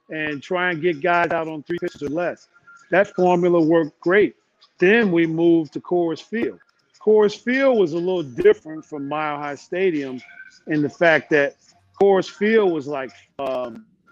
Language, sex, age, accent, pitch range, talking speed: English, male, 50-69, American, 150-185 Hz, 170 wpm